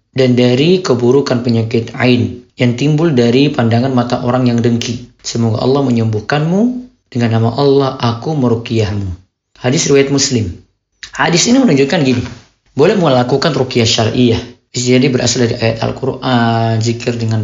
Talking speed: 135 wpm